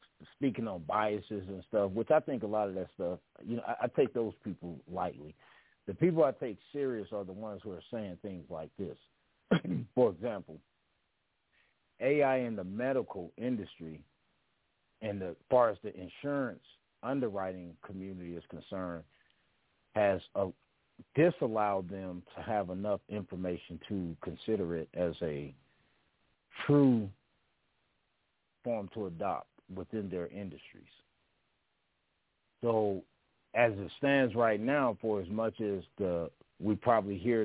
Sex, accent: male, American